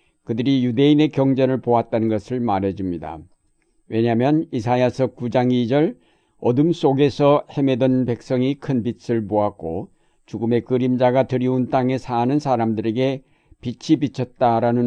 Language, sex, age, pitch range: Korean, male, 60-79, 115-145 Hz